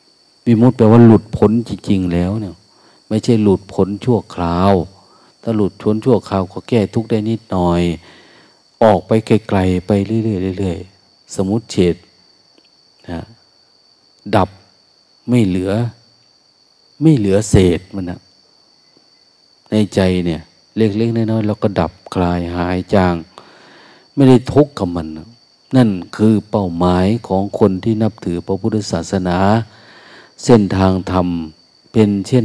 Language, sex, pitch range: Thai, male, 90-115 Hz